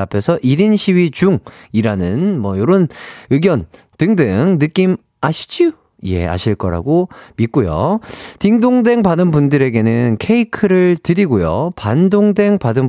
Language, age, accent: Korean, 40-59, native